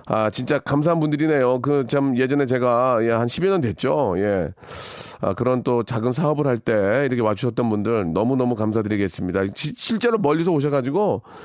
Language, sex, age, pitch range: Korean, male, 40-59, 110-145 Hz